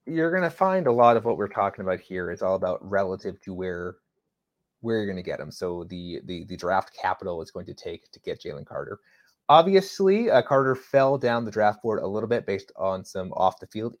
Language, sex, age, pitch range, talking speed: English, male, 30-49, 100-130 Hz, 225 wpm